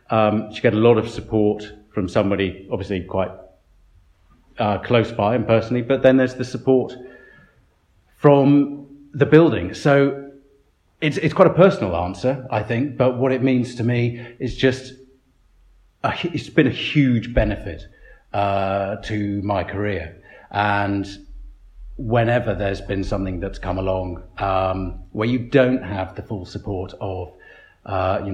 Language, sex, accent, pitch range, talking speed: English, male, British, 95-125 Hz, 145 wpm